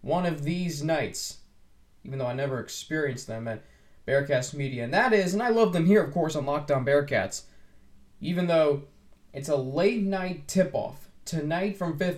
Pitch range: 130-170 Hz